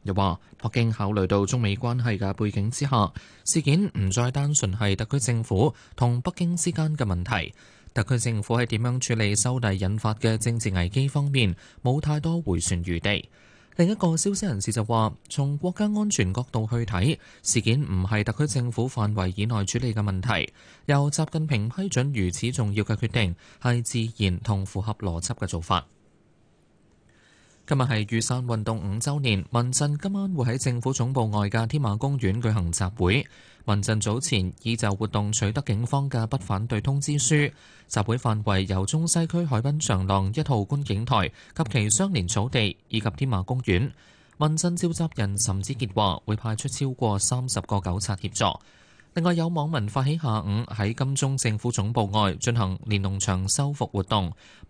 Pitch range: 100-135 Hz